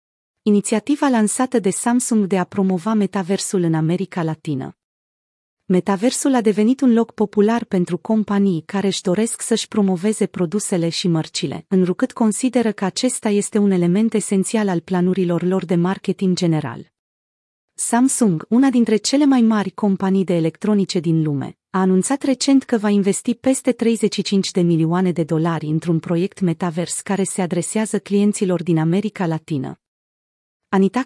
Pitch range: 180-220 Hz